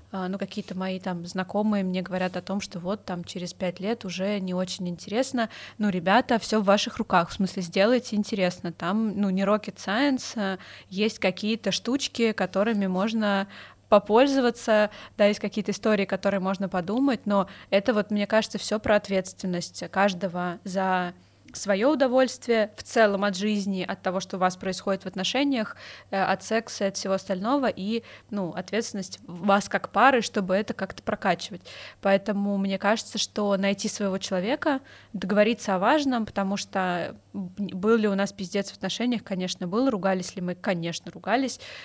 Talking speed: 160 wpm